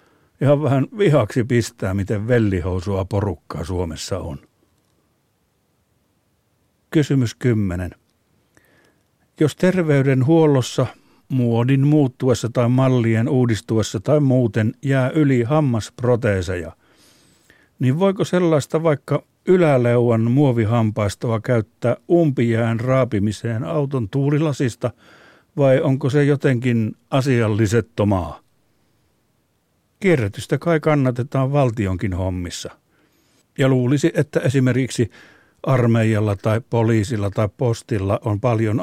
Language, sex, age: Finnish, male, 60-79